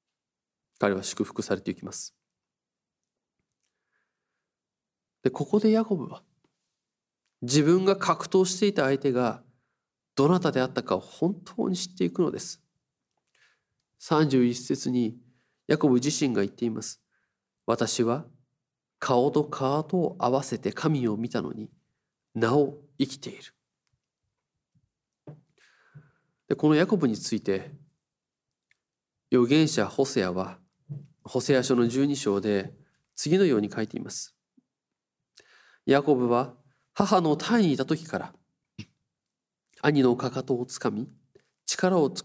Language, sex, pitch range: Japanese, male, 120-155 Hz